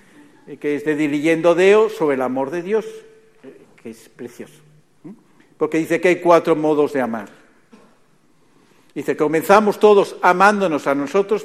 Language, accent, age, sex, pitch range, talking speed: Spanish, Spanish, 60-79, male, 145-200 Hz, 140 wpm